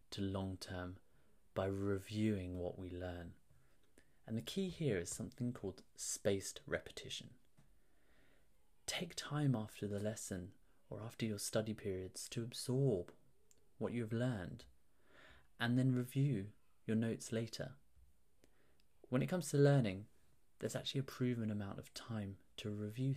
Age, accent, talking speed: 30-49, British, 130 wpm